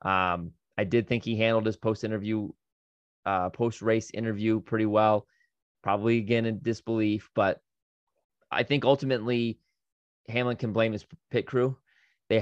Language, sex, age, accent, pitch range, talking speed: English, male, 20-39, American, 95-115 Hz, 145 wpm